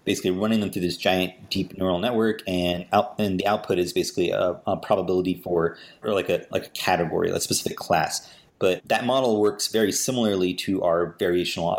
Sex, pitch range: male, 90-100 Hz